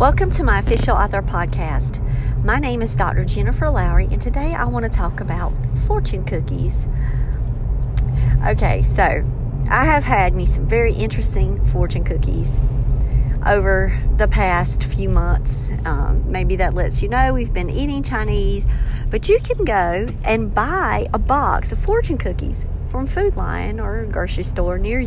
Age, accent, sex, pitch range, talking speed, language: 40-59, American, female, 120-195 Hz, 160 wpm, English